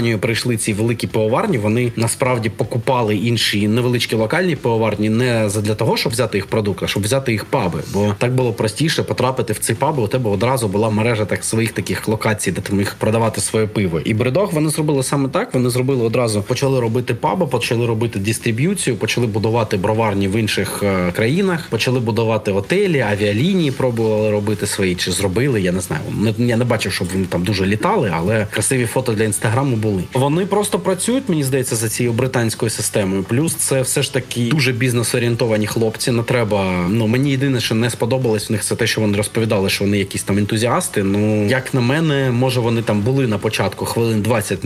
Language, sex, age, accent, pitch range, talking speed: Ukrainian, male, 30-49, native, 105-130 Hz, 190 wpm